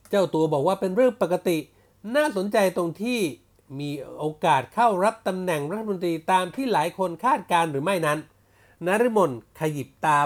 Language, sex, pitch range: Thai, male, 150-210 Hz